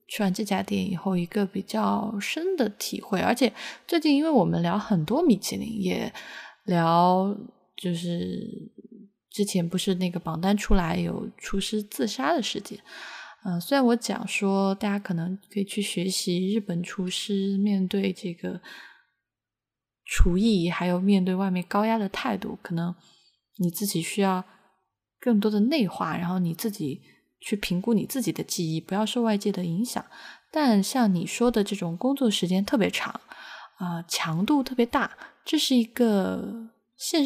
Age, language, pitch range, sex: 20-39, Chinese, 180-225 Hz, female